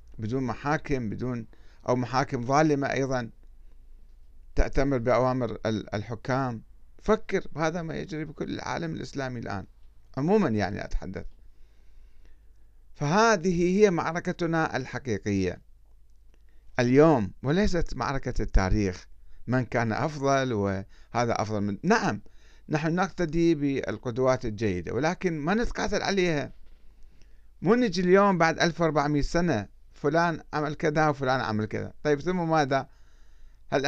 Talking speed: 105 wpm